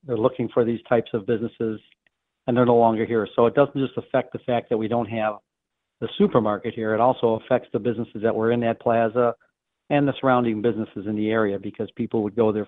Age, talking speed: 50-69, 225 wpm